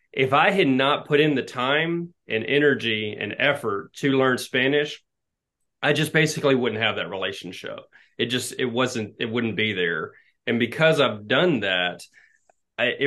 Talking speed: 165 wpm